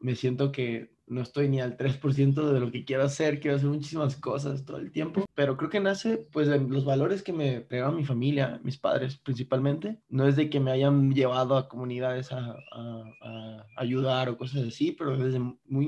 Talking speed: 210 wpm